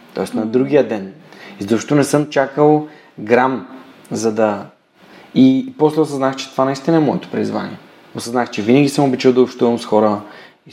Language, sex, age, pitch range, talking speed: Bulgarian, male, 20-39, 105-135 Hz, 180 wpm